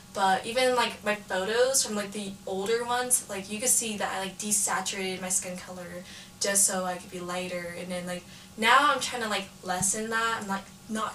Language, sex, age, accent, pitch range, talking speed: English, female, 10-29, American, 190-230 Hz, 215 wpm